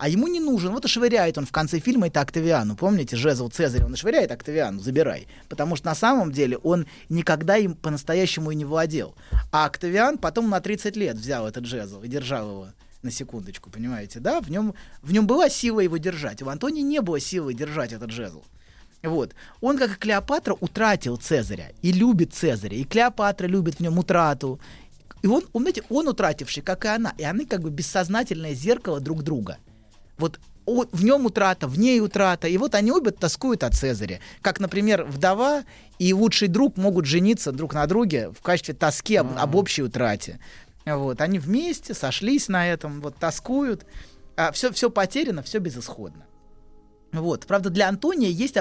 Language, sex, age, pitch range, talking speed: Russian, male, 20-39, 140-210 Hz, 185 wpm